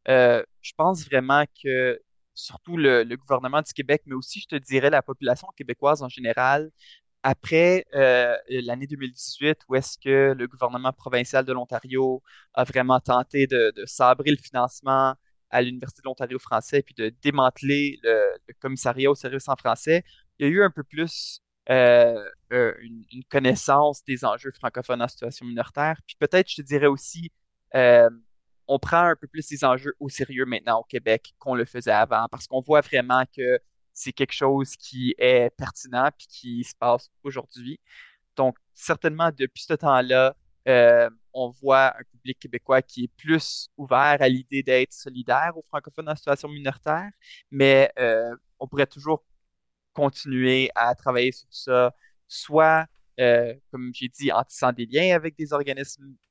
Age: 20-39